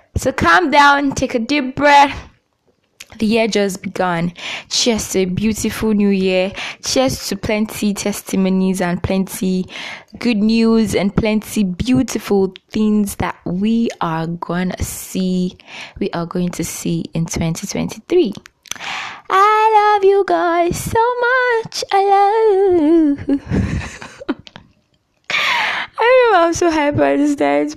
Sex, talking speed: female, 125 wpm